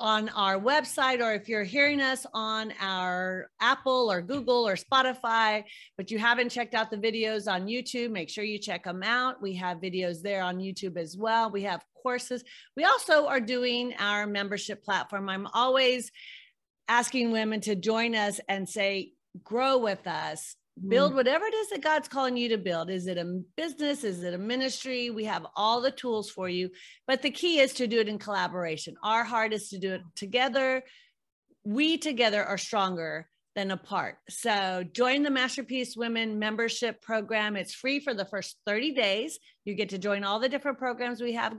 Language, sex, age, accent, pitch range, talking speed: English, female, 40-59, American, 200-250 Hz, 190 wpm